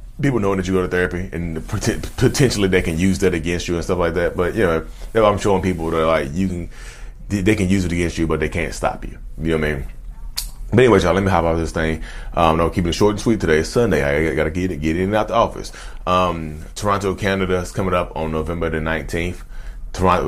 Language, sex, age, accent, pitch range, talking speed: English, male, 20-39, American, 80-100 Hz, 250 wpm